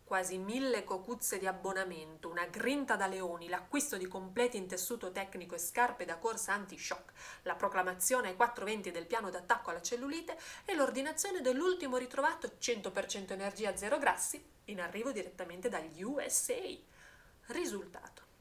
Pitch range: 180-245 Hz